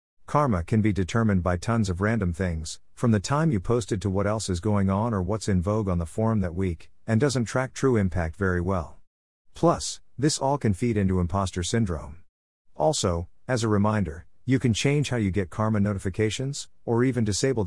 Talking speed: 200 wpm